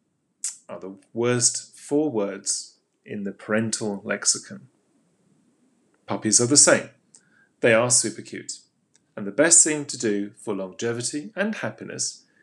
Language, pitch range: English, 110-155 Hz